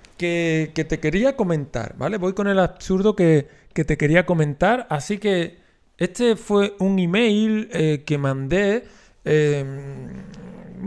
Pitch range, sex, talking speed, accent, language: 140-195 Hz, male, 140 wpm, Spanish, Spanish